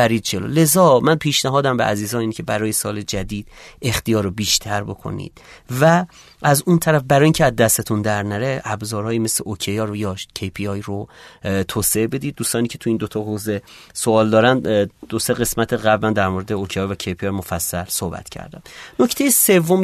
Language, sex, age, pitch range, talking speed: Persian, male, 30-49, 105-135 Hz, 165 wpm